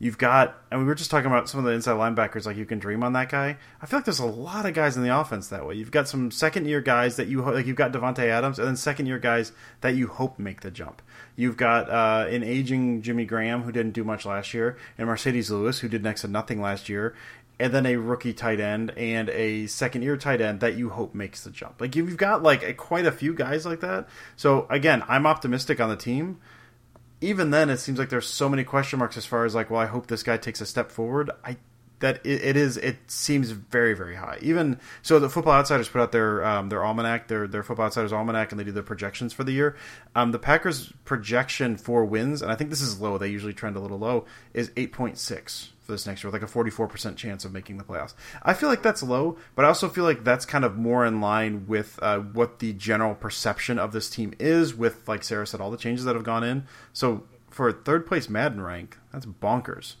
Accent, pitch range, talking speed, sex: American, 110-135 Hz, 250 wpm, male